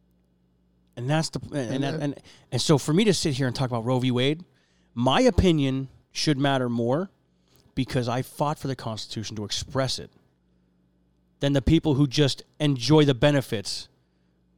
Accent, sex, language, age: American, male, English, 30-49